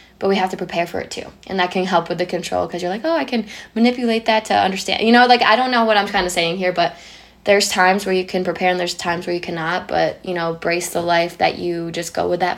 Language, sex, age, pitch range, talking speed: English, female, 10-29, 170-185 Hz, 295 wpm